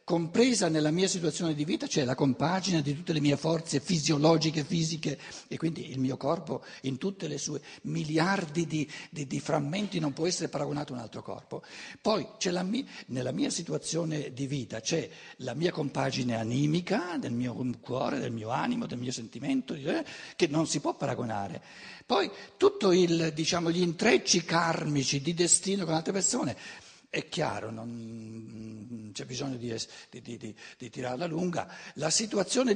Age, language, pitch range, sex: 60-79, Italian, 135-180 Hz, male